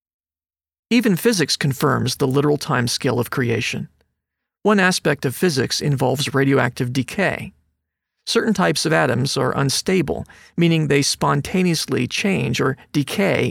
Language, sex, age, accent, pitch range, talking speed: English, male, 40-59, American, 130-175 Hz, 120 wpm